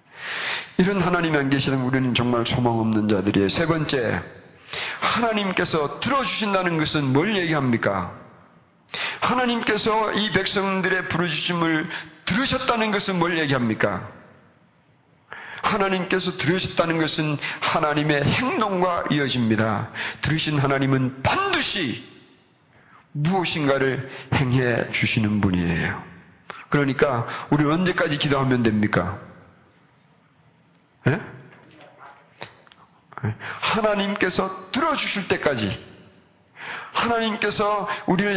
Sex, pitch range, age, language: male, 120-185 Hz, 40-59, Korean